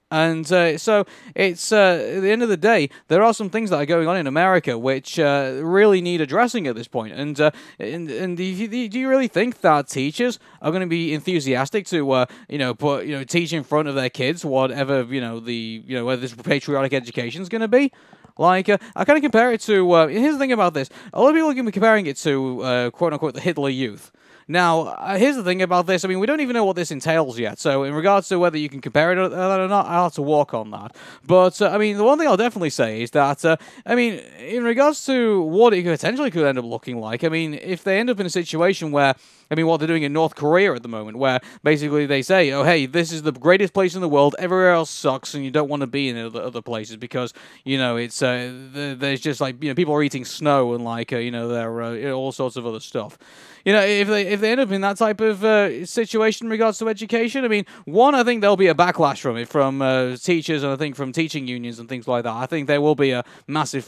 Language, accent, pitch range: English, British, 135-200 Hz